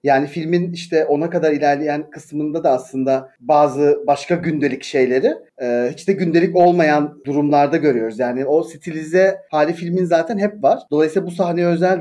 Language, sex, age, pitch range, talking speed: Turkish, male, 40-59, 145-195 Hz, 160 wpm